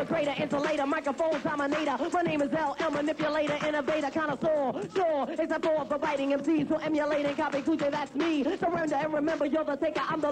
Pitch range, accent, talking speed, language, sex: 285-320 Hz, American, 170 wpm, English, female